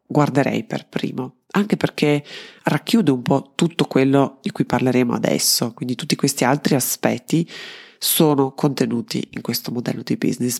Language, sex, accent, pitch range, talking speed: Italian, female, native, 130-165 Hz, 145 wpm